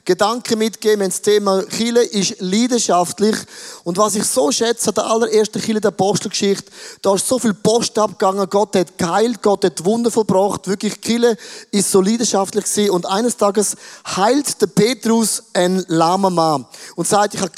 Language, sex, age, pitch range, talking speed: German, male, 20-39, 195-240 Hz, 165 wpm